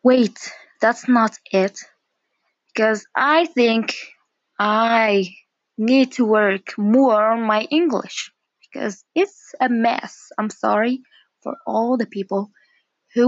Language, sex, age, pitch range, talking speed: Arabic, female, 20-39, 210-275 Hz, 115 wpm